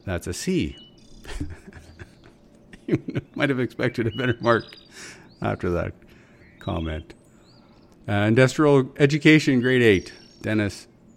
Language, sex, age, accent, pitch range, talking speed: English, male, 40-59, American, 100-145 Hz, 100 wpm